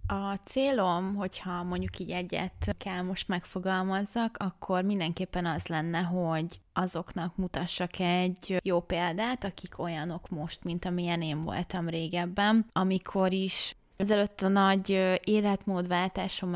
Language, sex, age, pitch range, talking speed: Hungarian, female, 20-39, 175-200 Hz, 120 wpm